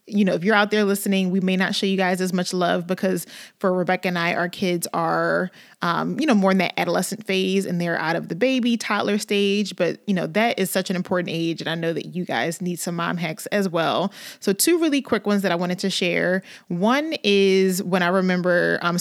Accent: American